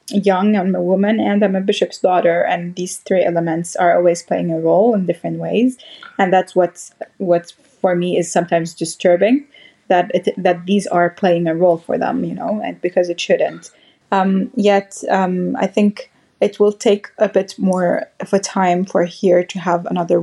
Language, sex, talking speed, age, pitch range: Finnish, female, 195 wpm, 10-29, 175-210 Hz